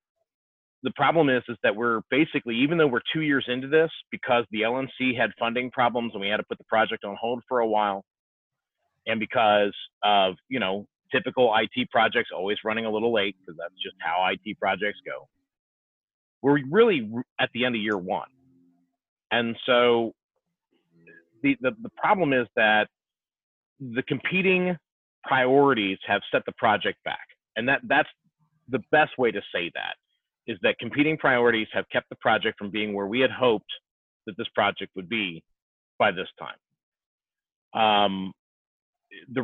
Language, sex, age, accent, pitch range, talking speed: English, male, 30-49, American, 105-135 Hz, 165 wpm